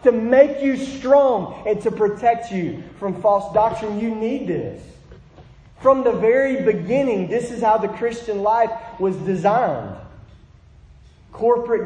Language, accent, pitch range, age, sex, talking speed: English, American, 165-225 Hz, 40-59, male, 135 wpm